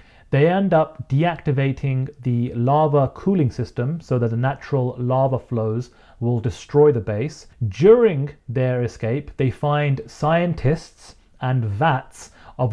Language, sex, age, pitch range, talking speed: English, male, 30-49, 125-150 Hz, 125 wpm